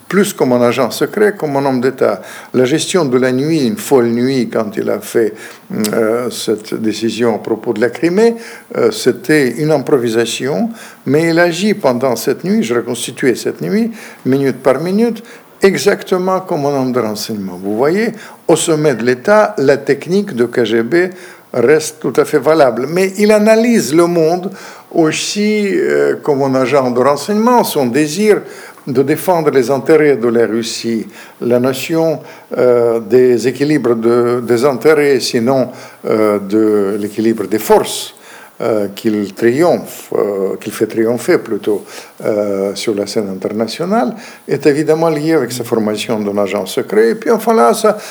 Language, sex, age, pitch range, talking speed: French, male, 60-79, 120-190 Hz, 160 wpm